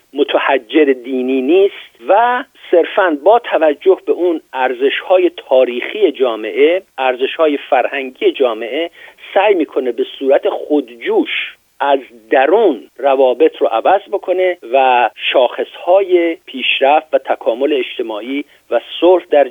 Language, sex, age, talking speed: Persian, male, 50-69, 110 wpm